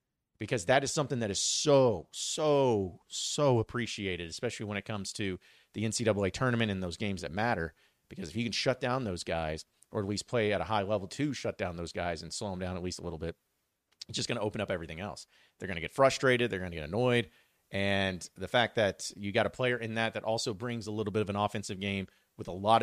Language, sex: English, male